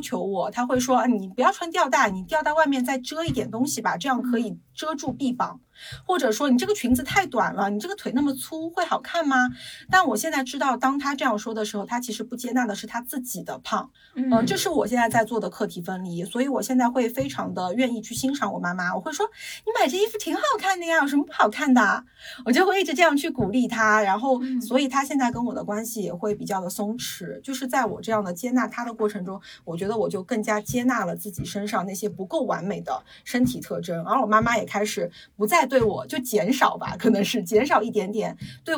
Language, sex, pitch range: Chinese, female, 205-265 Hz